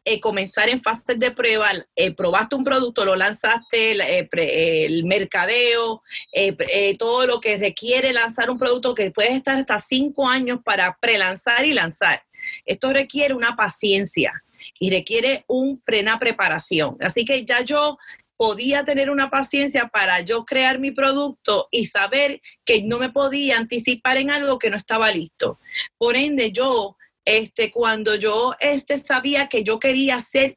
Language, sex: English, female